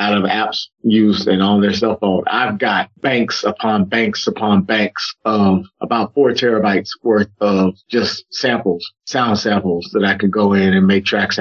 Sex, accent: male, American